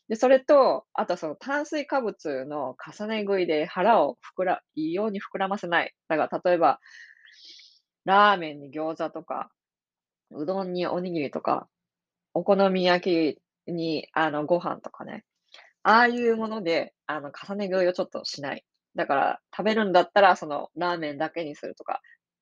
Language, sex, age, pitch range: Japanese, female, 20-39, 165-230 Hz